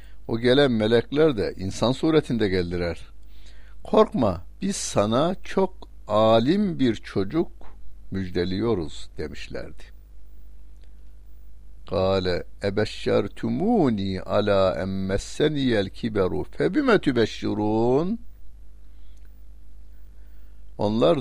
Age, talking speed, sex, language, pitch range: 60-79, 65 wpm, male, Turkish, 90-120 Hz